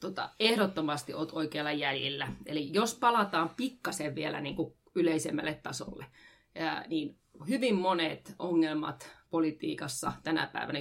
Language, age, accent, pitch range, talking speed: English, 30-49, Finnish, 160-215 Hz, 110 wpm